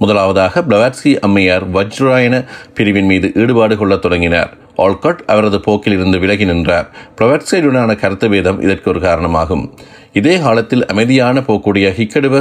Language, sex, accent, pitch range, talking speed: Tamil, male, native, 95-115 Hz, 115 wpm